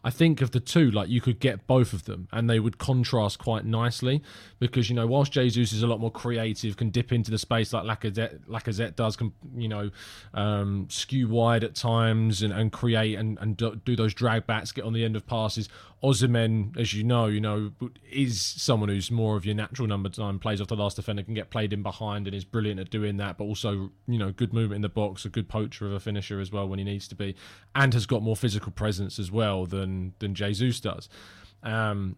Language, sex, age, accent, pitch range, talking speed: English, male, 20-39, British, 100-120 Hz, 235 wpm